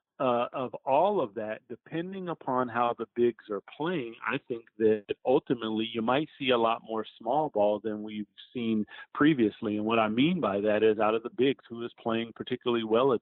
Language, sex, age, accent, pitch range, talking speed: English, male, 40-59, American, 110-120 Hz, 205 wpm